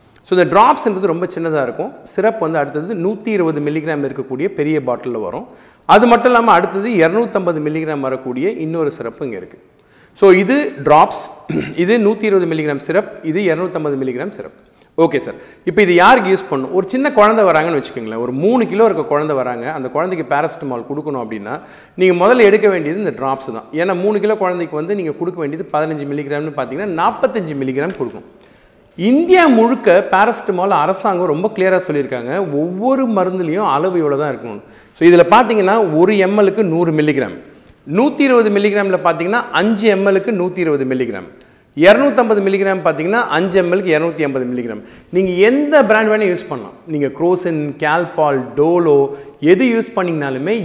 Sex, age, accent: male, 40-59, native